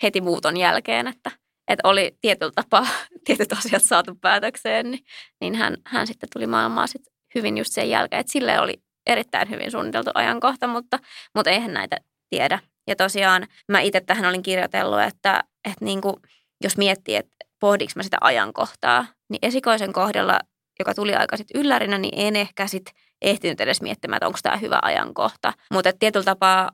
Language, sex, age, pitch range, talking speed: Finnish, female, 20-39, 185-220 Hz, 165 wpm